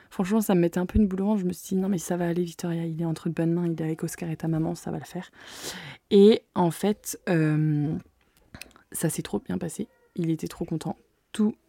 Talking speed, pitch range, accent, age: 260 wpm, 175-205 Hz, French, 20-39